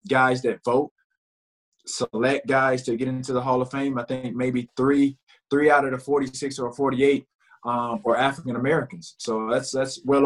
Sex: male